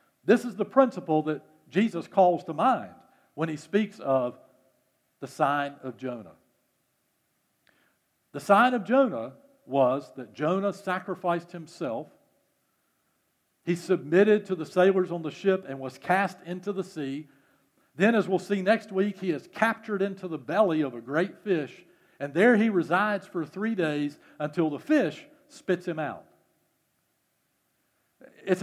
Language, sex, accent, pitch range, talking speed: English, male, American, 155-205 Hz, 145 wpm